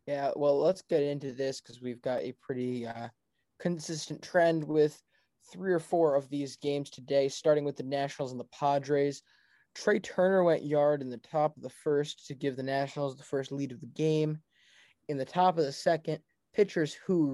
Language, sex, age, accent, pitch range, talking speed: English, male, 20-39, American, 135-155 Hz, 195 wpm